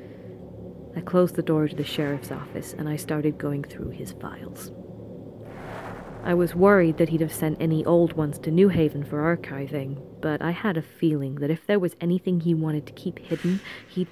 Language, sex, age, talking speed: English, female, 30-49, 195 wpm